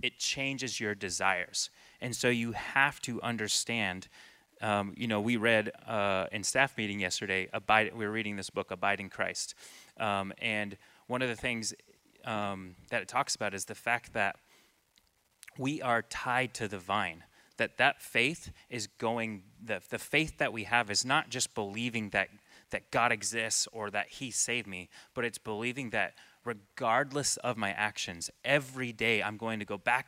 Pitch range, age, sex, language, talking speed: 100-120 Hz, 30-49, male, English, 180 wpm